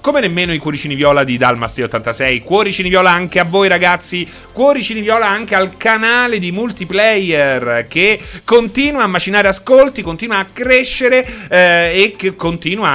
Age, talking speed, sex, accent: 30-49, 150 wpm, male, native